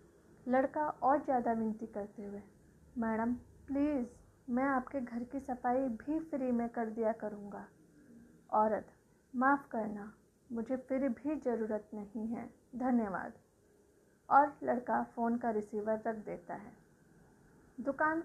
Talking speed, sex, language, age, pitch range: 125 wpm, female, Hindi, 30-49, 230-280 Hz